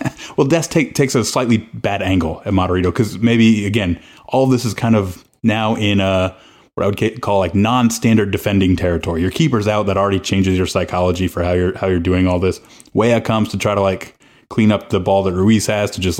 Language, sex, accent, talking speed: English, male, American, 230 wpm